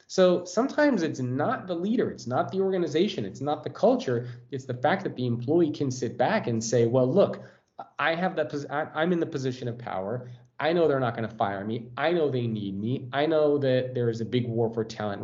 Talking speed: 230 wpm